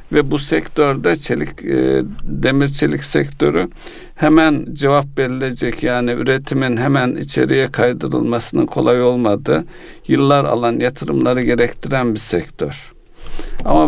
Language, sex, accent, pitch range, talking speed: Turkish, male, native, 110-140 Hz, 105 wpm